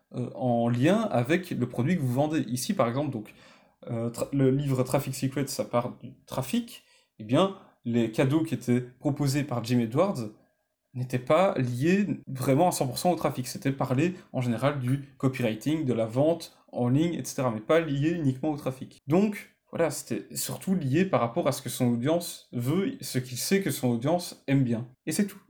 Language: French